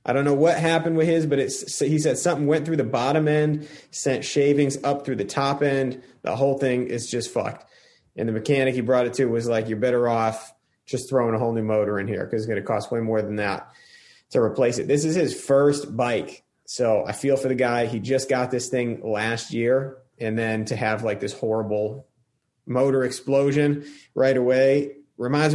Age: 30-49